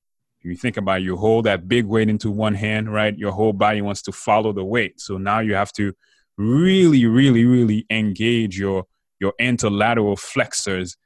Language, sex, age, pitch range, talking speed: English, male, 20-39, 95-110 Hz, 185 wpm